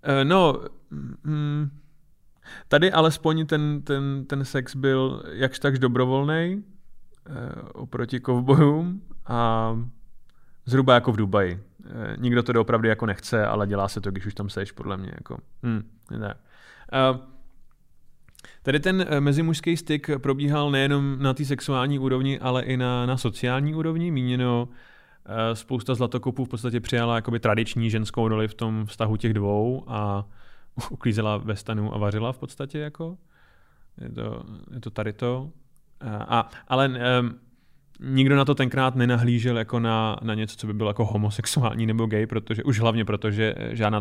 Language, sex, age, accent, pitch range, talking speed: Czech, male, 20-39, native, 105-135 Hz, 145 wpm